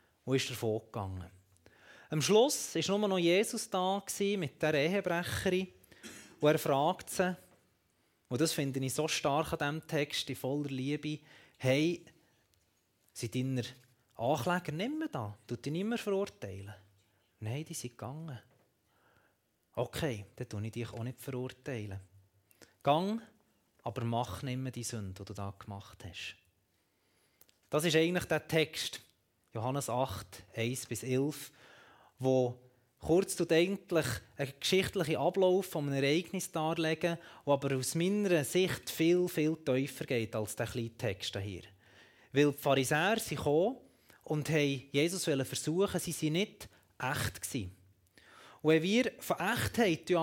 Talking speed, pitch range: 140 wpm, 115-165 Hz